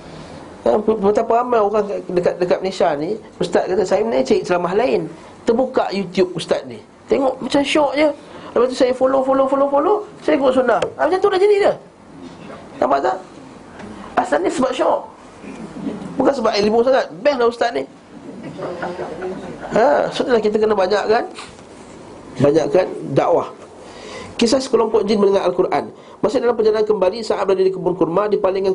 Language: Malay